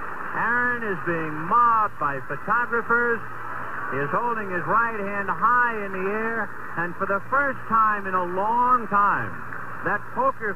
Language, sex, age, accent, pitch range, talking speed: English, male, 60-79, American, 180-235 Hz, 155 wpm